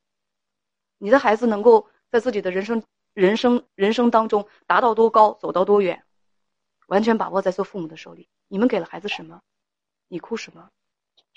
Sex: female